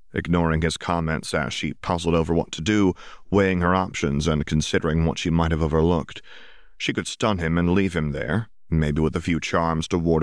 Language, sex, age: English, male, 30-49